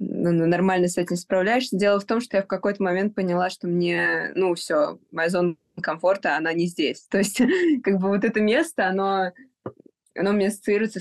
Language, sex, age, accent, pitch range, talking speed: Russian, female, 20-39, native, 175-200 Hz, 185 wpm